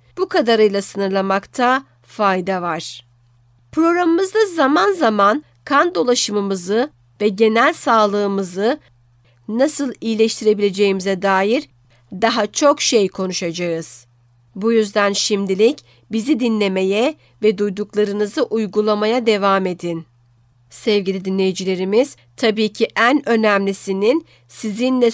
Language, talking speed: Turkish, 90 wpm